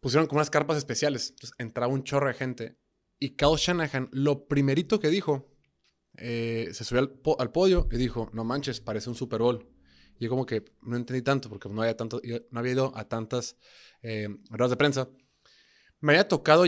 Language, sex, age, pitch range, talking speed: Spanish, male, 20-39, 115-155 Hz, 200 wpm